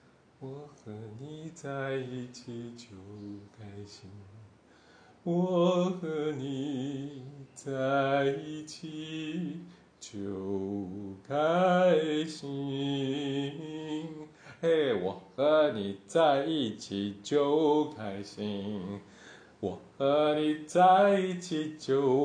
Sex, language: male, Chinese